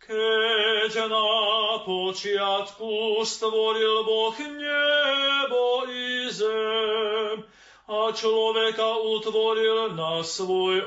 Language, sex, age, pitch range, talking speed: Slovak, male, 40-59, 185-220 Hz, 70 wpm